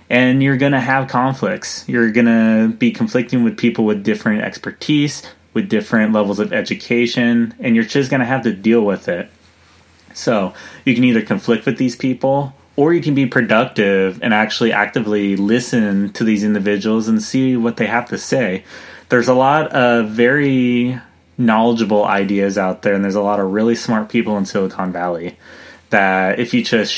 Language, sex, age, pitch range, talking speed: English, male, 20-39, 105-125 Hz, 180 wpm